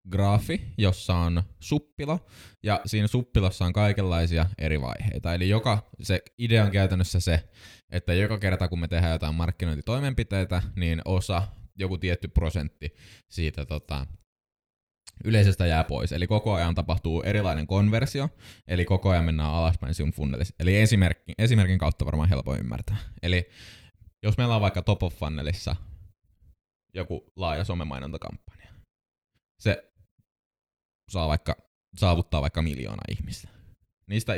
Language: Finnish